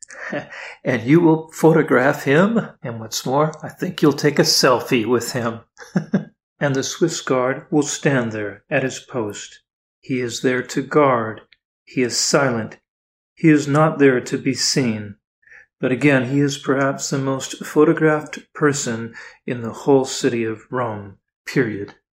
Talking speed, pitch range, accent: 155 wpm, 125-155 Hz, American